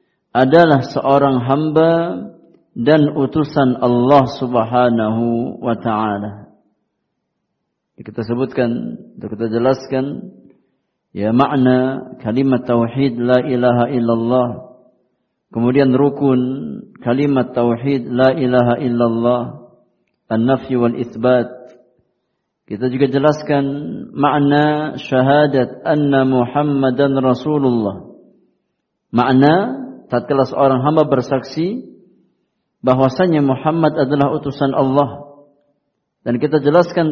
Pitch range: 125-150 Hz